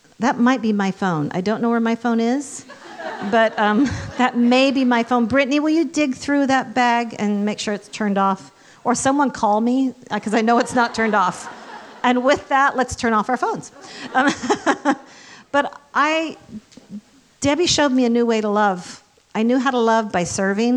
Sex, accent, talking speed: female, American, 200 wpm